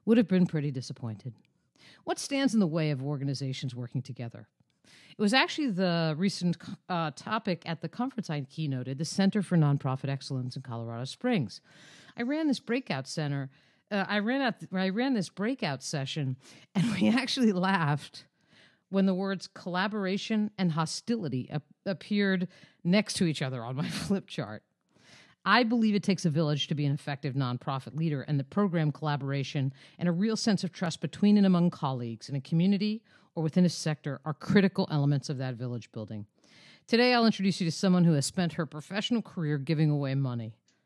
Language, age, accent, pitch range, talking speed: English, 50-69, American, 145-205 Hz, 180 wpm